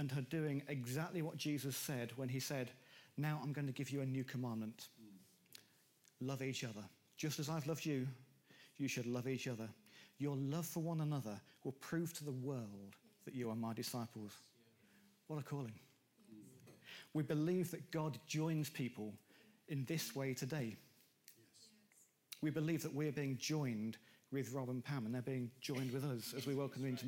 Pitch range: 125-155 Hz